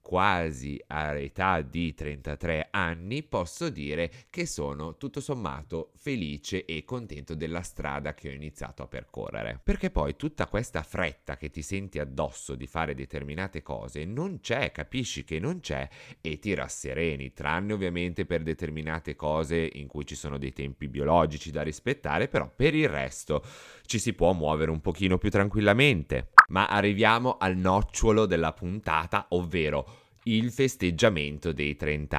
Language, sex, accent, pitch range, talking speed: Italian, male, native, 75-110 Hz, 150 wpm